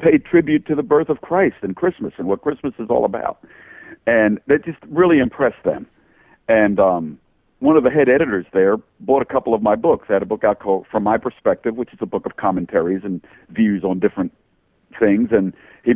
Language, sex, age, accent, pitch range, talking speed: English, male, 50-69, American, 100-150 Hz, 215 wpm